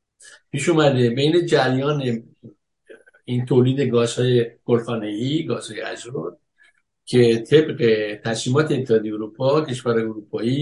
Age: 60-79